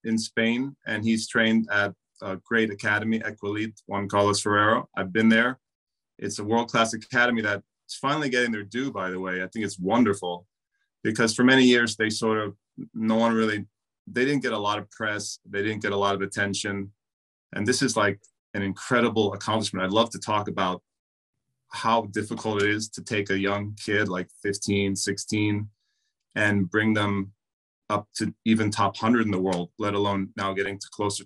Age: 30-49